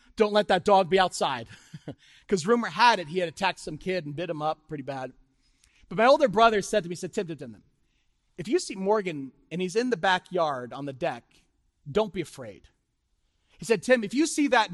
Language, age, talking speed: English, 40-59, 210 wpm